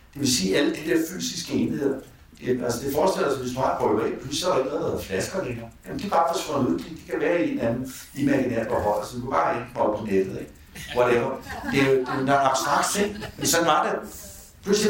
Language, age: Danish, 60-79